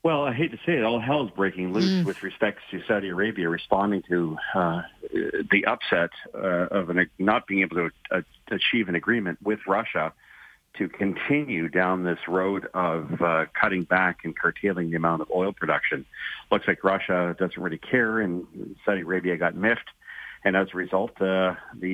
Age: 50-69